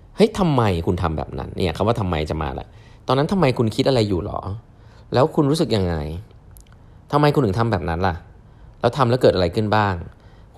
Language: Thai